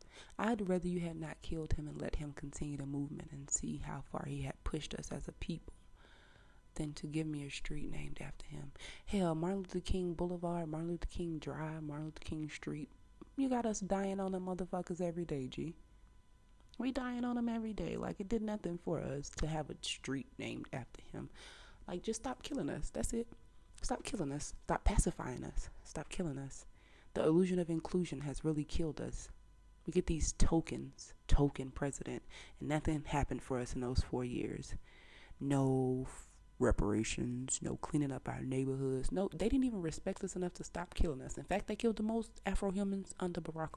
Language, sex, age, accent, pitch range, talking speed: English, female, 20-39, American, 135-180 Hz, 195 wpm